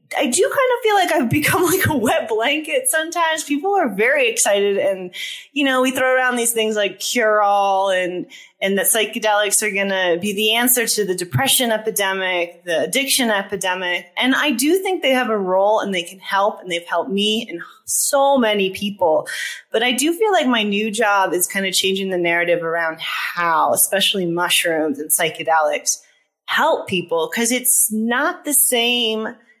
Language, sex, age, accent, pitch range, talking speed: English, female, 30-49, American, 185-255 Hz, 185 wpm